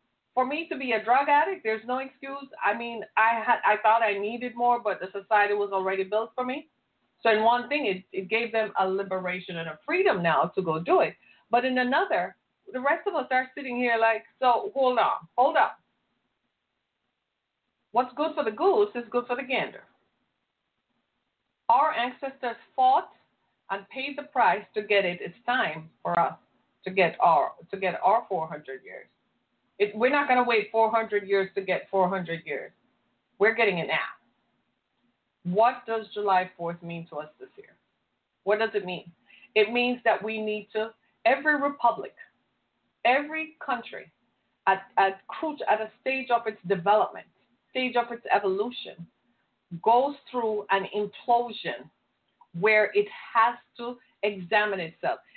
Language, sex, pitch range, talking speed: English, female, 195-250 Hz, 165 wpm